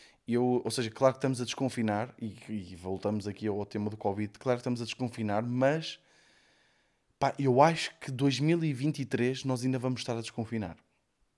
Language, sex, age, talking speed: Portuguese, male, 20-39, 175 wpm